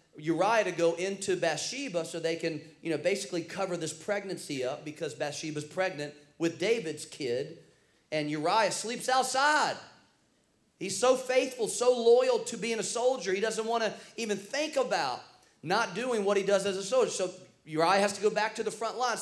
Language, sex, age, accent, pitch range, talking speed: English, male, 40-59, American, 165-230 Hz, 185 wpm